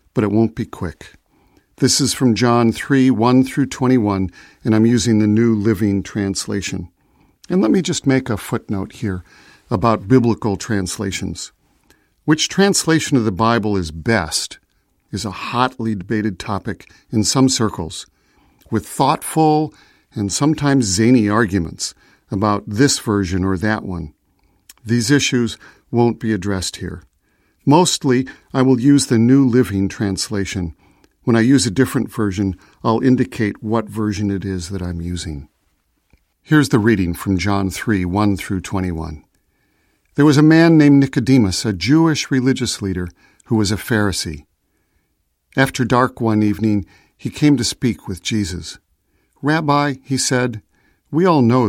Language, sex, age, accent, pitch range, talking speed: English, male, 50-69, American, 95-130 Hz, 145 wpm